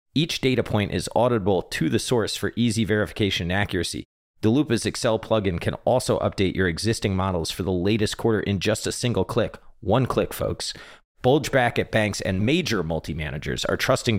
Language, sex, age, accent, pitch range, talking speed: English, male, 30-49, American, 85-105 Hz, 180 wpm